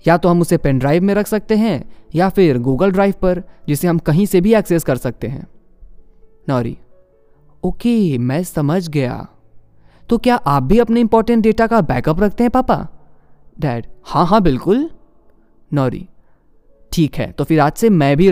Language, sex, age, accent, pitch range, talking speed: Hindi, male, 20-39, native, 135-190 Hz, 175 wpm